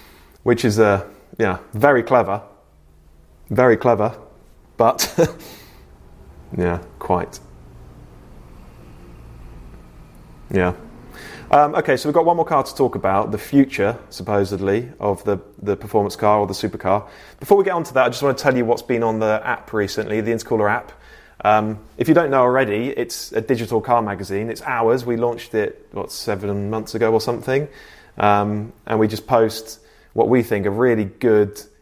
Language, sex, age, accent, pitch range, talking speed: English, male, 20-39, British, 100-120 Hz, 165 wpm